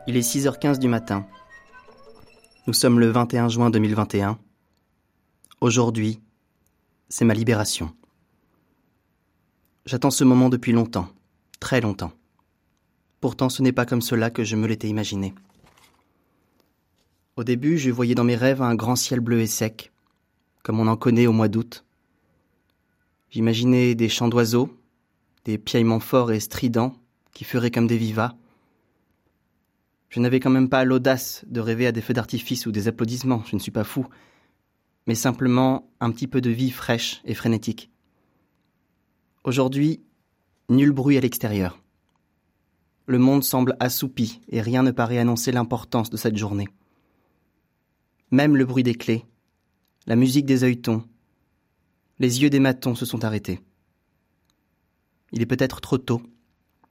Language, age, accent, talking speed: French, 20-39, French, 145 wpm